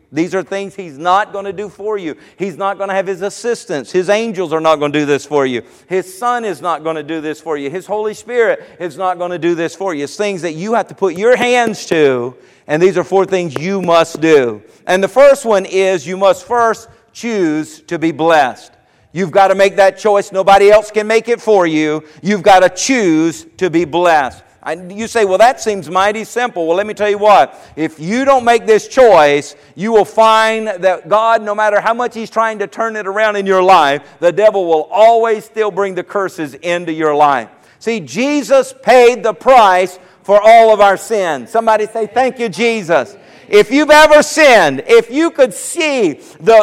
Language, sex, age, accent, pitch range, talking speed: English, male, 50-69, American, 180-235 Hz, 220 wpm